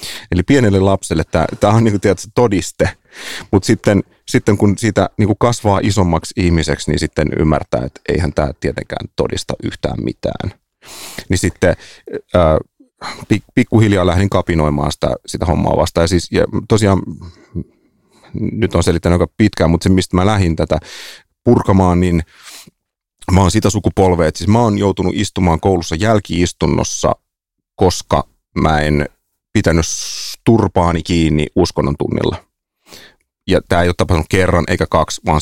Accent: native